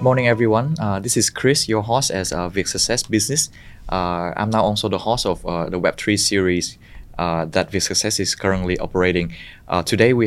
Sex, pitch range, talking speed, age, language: male, 90-105 Hz, 205 wpm, 20-39, Vietnamese